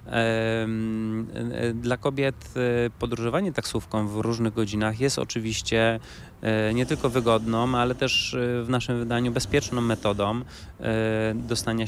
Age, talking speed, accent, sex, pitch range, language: 20-39, 100 wpm, native, male, 105-115 Hz, Polish